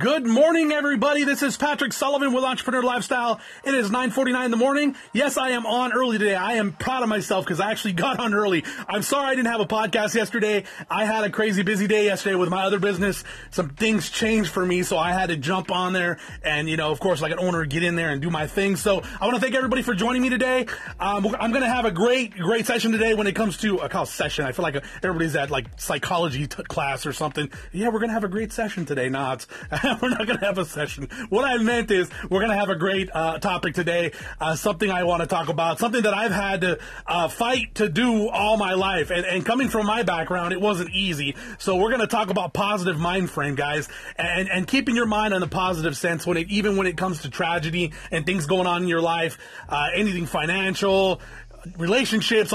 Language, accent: English, American